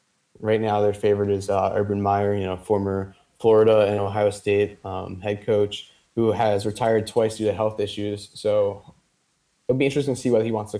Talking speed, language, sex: 205 wpm, English, male